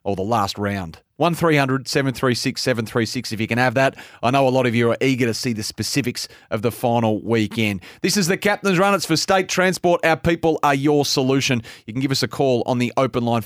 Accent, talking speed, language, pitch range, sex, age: Australian, 230 wpm, English, 115-150 Hz, male, 30-49